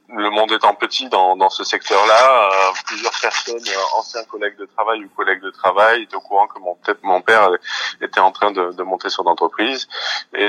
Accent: French